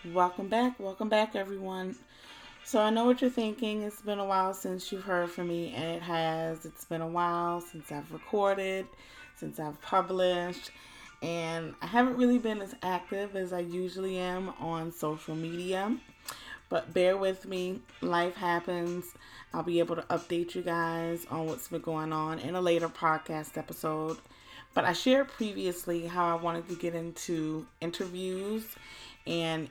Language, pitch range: English, 160-190 Hz